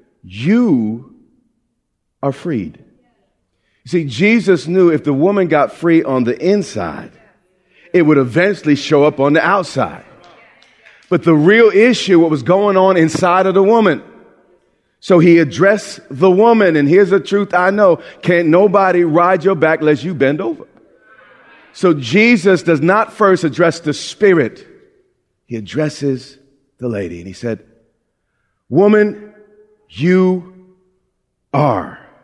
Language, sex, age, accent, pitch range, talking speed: English, male, 40-59, American, 135-190 Hz, 135 wpm